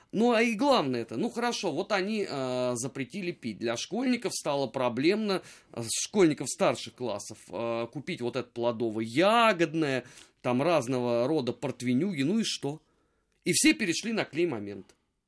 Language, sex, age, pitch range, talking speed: Russian, male, 30-49, 125-195 Hz, 140 wpm